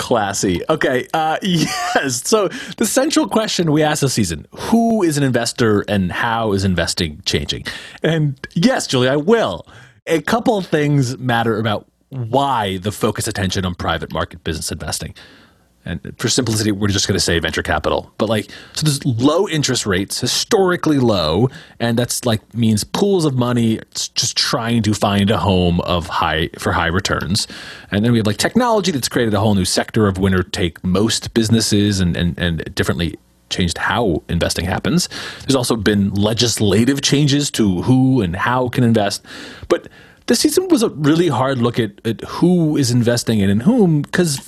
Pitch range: 100-145 Hz